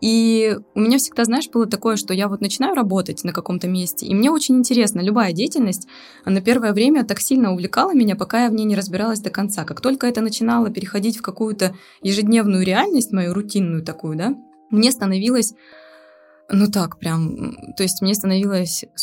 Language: Russian